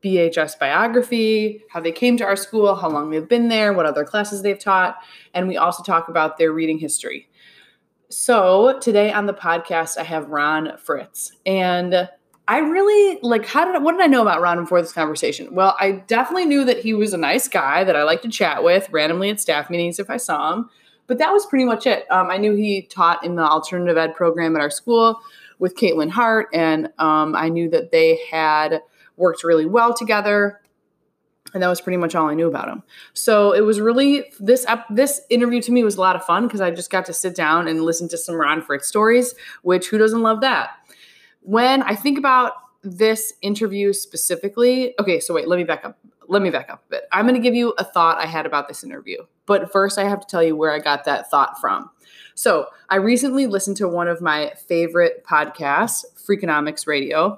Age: 20-39